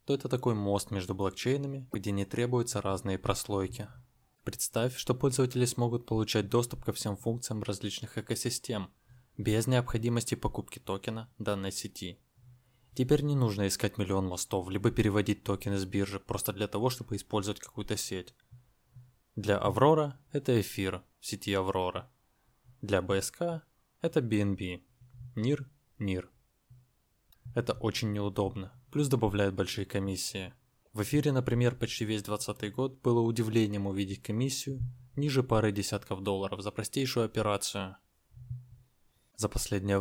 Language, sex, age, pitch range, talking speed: Russian, male, 20-39, 100-125 Hz, 125 wpm